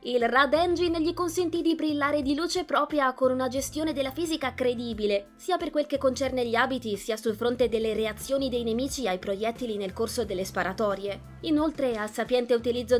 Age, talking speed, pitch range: 20-39, 185 wpm, 215-285 Hz